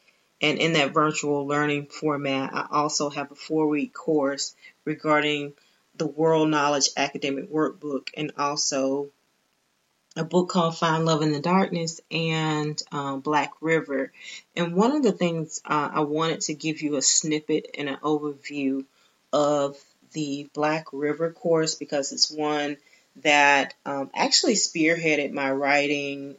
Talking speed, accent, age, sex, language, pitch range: 140 wpm, American, 30-49, female, English, 140-155 Hz